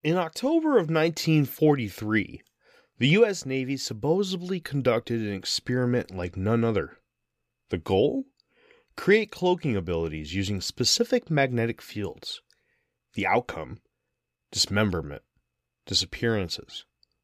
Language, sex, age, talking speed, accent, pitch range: English, male, 30-49, 95 wpm, American, 100-145 Hz